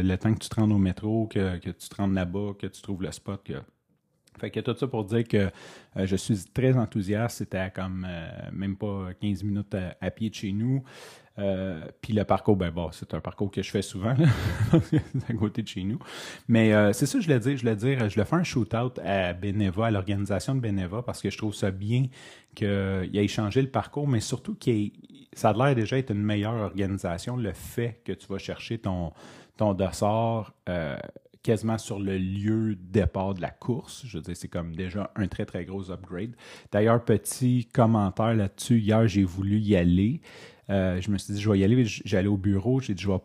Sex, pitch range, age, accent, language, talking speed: male, 95-115 Hz, 30-49, Canadian, French, 225 wpm